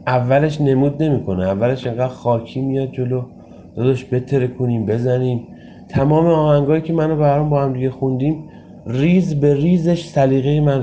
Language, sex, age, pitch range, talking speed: Persian, male, 30-49, 115-145 Hz, 140 wpm